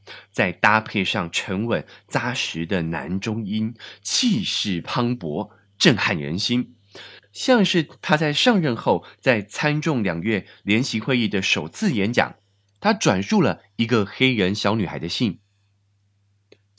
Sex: male